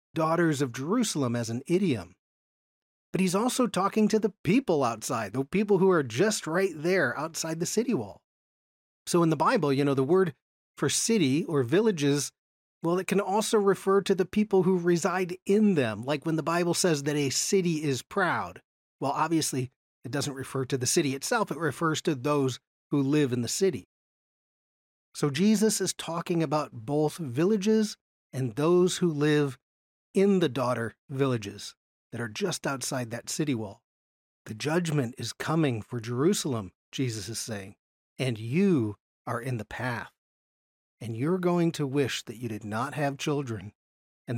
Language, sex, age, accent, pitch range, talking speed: English, male, 40-59, American, 120-175 Hz, 170 wpm